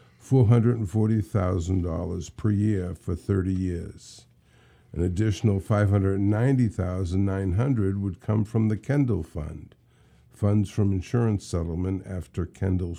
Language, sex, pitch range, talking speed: English, male, 95-120 Hz, 90 wpm